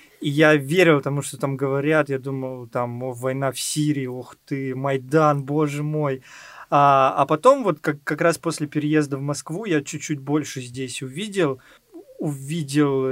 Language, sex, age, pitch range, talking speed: Russian, male, 20-39, 125-150 Hz, 160 wpm